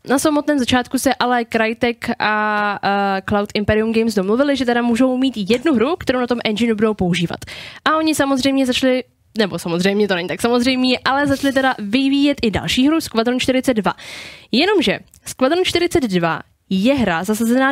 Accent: native